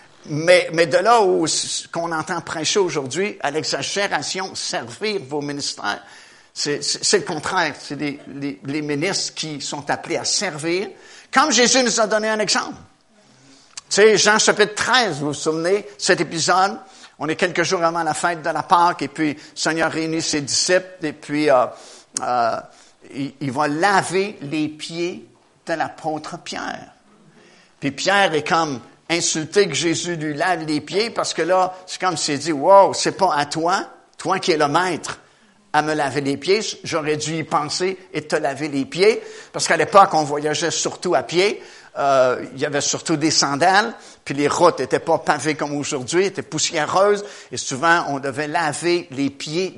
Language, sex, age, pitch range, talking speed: French, male, 60-79, 150-190 Hz, 185 wpm